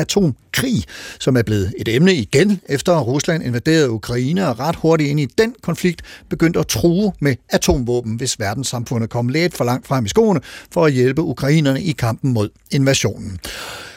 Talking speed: 170 wpm